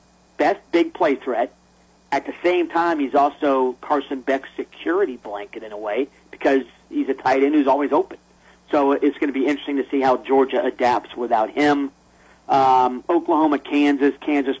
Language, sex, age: English, male, 40-59